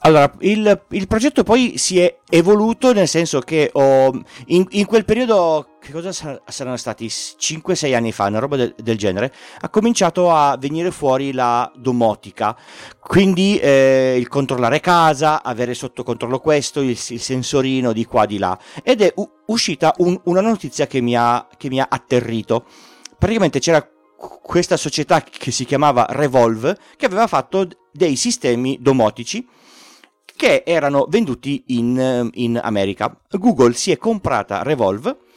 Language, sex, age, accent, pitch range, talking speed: Italian, male, 40-59, native, 120-190 Hz, 155 wpm